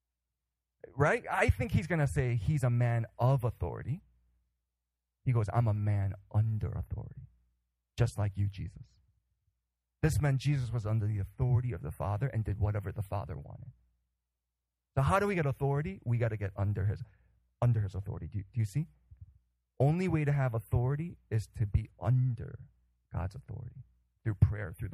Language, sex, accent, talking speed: English, male, American, 170 wpm